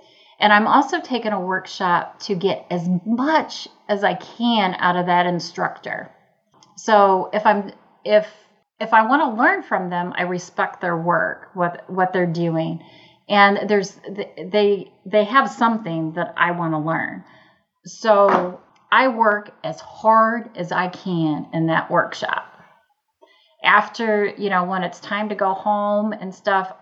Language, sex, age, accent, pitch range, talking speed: English, female, 30-49, American, 180-220 Hz, 155 wpm